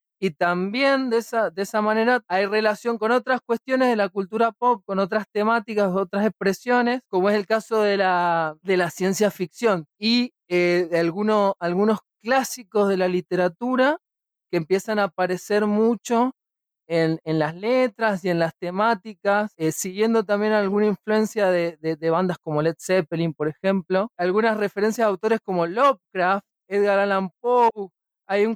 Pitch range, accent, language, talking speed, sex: 185-235 Hz, Argentinian, Spanish, 155 wpm, male